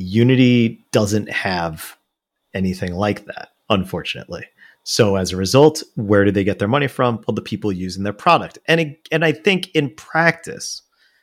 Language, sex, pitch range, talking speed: English, male, 100-130 Hz, 165 wpm